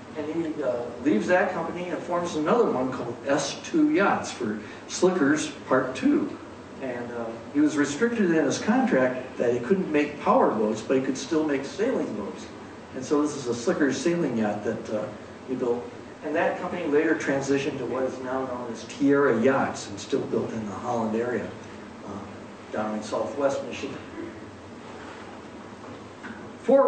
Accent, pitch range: American, 110-145 Hz